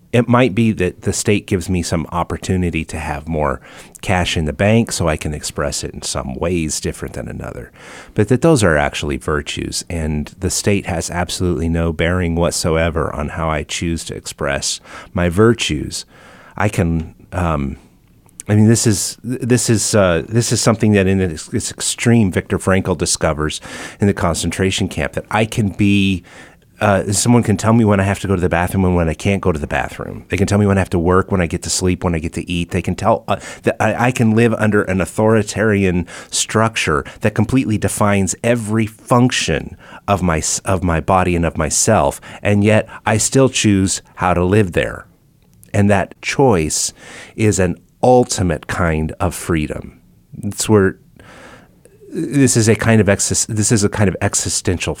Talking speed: 190 wpm